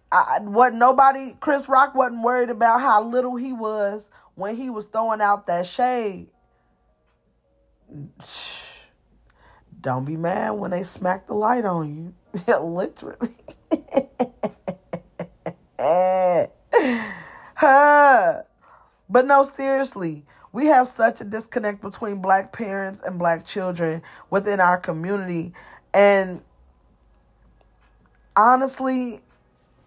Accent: American